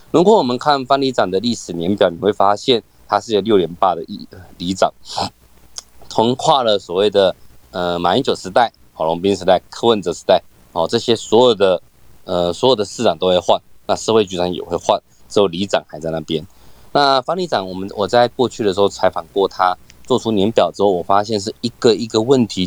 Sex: male